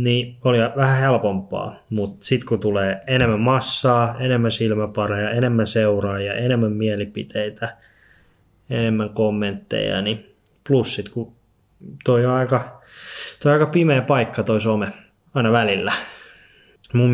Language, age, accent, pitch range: Finnish, 20-39, native, 105-125 Hz